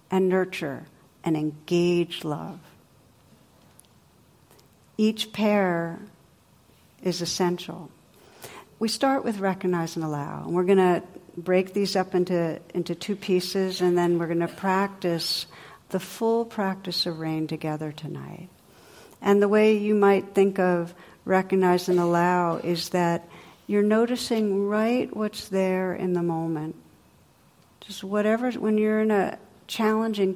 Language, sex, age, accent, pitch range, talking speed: English, female, 60-79, American, 170-200 Hz, 130 wpm